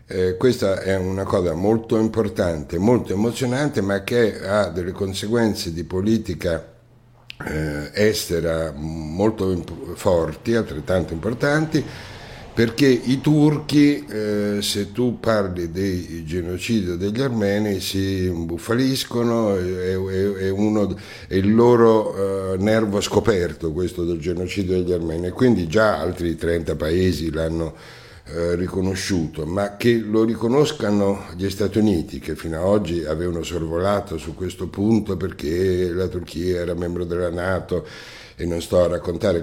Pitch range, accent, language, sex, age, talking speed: 85-110 Hz, native, Italian, male, 60-79, 120 wpm